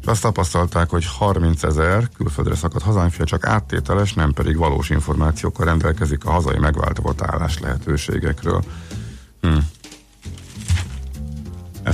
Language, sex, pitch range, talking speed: Hungarian, male, 80-95 Hz, 105 wpm